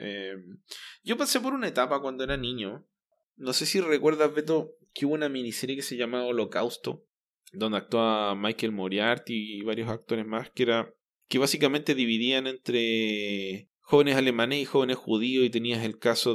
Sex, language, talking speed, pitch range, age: male, Spanish, 165 wpm, 110-135 Hz, 20-39